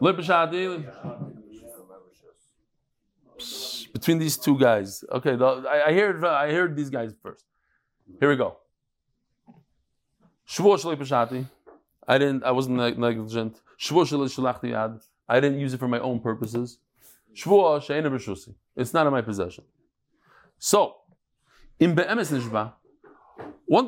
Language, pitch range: English, 130-190 Hz